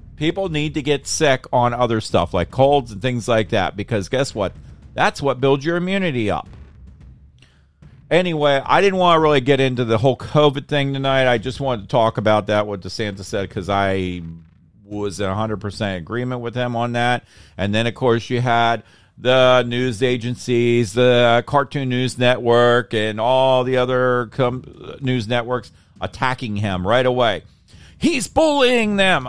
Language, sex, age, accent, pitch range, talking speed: English, male, 50-69, American, 105-140 Hz, 170 wpm